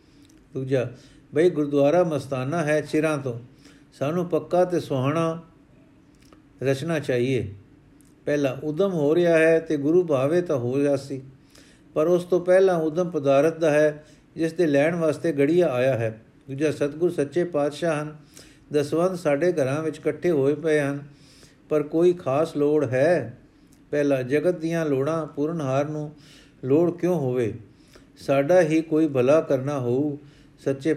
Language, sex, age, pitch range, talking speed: Punjabi, male, 50-69, 140-160 Hz, 120 wpm